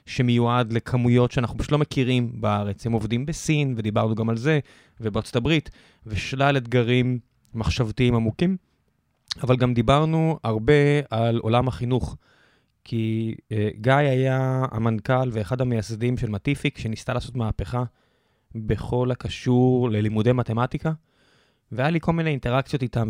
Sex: male